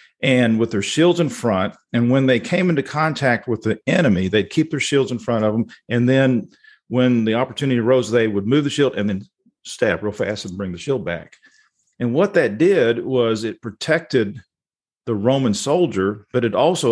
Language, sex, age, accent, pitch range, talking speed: English, male, 50-69, American, 110-140 Hz, 200 wpm